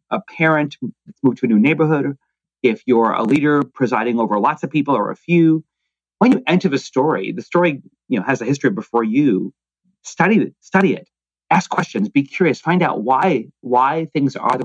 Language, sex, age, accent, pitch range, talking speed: English, male, 30-49, American, 125-170 Hz, 195 wpm